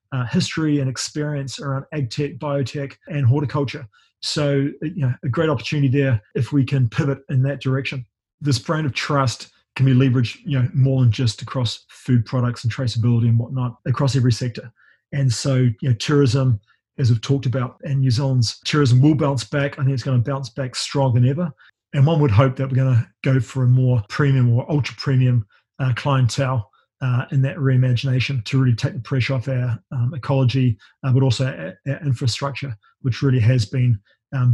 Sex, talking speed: male, 195 wpm